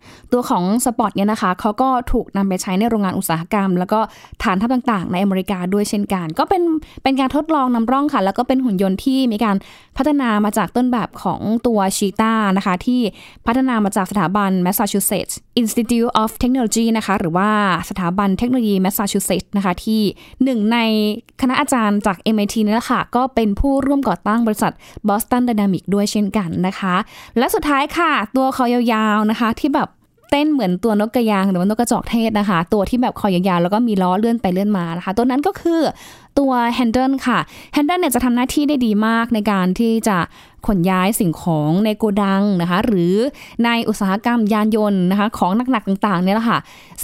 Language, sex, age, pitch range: Thai, female, 10-29, 195-245 Hz